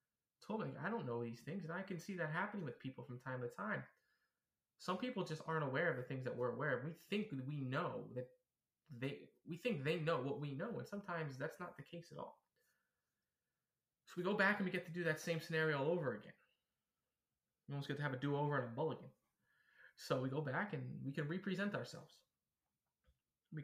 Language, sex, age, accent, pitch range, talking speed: English, male, 20-39, American, 135-175 Hz, 225 wpm